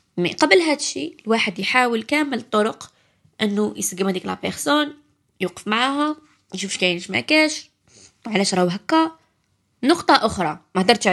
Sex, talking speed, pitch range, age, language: female, 115 wpm, 175-235 Hz, 20-39, Arabic